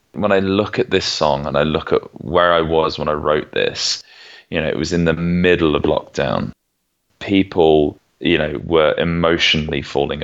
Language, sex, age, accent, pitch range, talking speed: English, male, 20-39, British, 80-90 Hz, 190 wpm